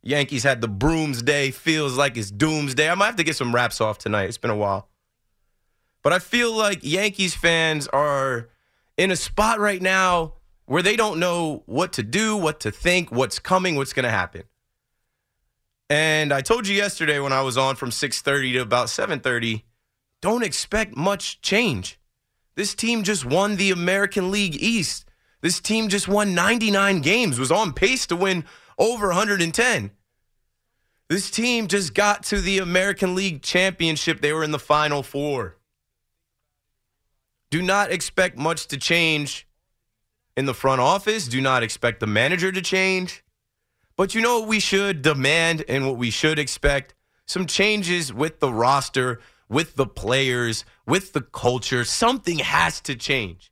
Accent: American